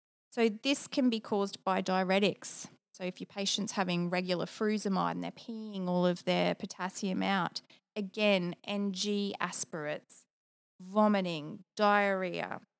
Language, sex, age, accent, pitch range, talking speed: English, female, 20-39, Australian, 185-220 Hz, 125 wpm